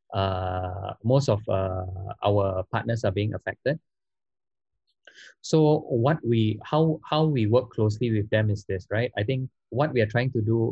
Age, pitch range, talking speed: 20-39, 100-120 Hz, 170 wpm